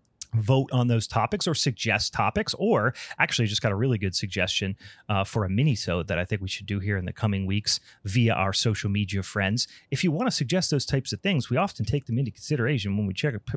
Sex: male